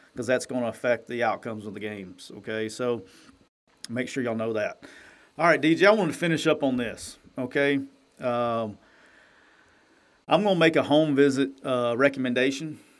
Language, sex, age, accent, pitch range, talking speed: English, male, 40-59, American, 115-140 Hz, 180 wpm